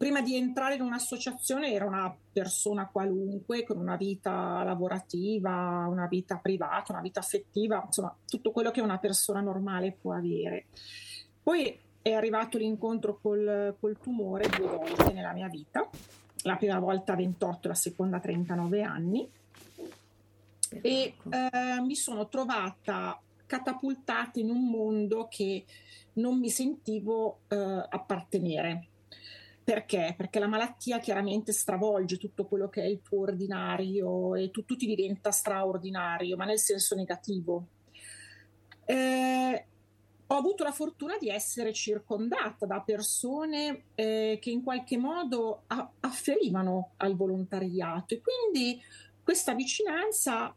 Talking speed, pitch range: 130 wpm, 185-250 Hz